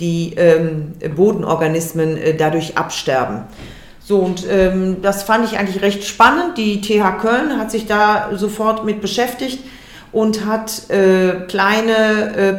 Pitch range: 185-225 Hz